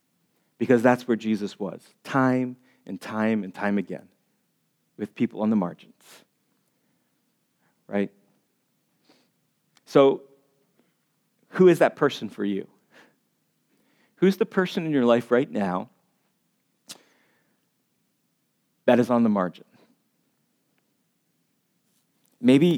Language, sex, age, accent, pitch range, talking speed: English, male, 40-59, American, 115-155 Hz, 100 wpm